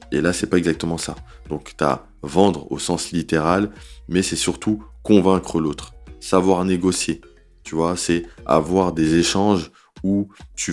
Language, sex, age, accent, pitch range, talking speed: French, male, 20-39, French, 80-95 Hz, 150 wpm